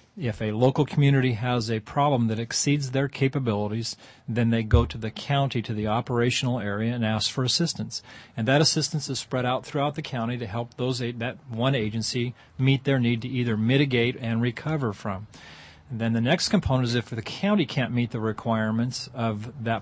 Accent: American